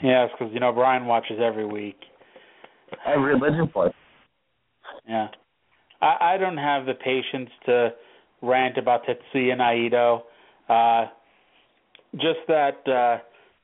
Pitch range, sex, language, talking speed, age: 120-150 Hz, male, English, 110 wpm, 30-49